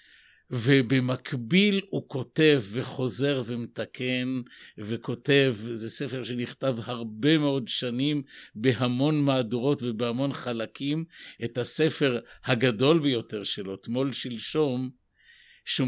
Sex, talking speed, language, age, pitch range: male, 90 wpm, Hebrew, 50-69, 115-140 Hz